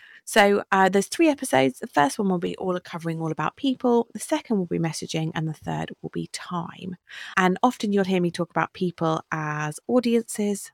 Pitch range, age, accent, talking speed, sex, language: 160-215 Hz, 30-49, British, 200 wpm, female, English